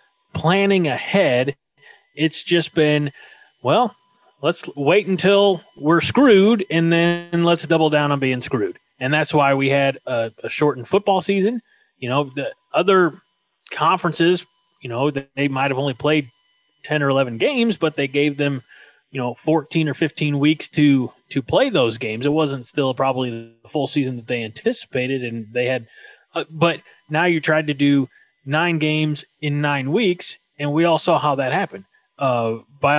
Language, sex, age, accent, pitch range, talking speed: English, male, 30-49, American, 140-175 Hz, 170 wpm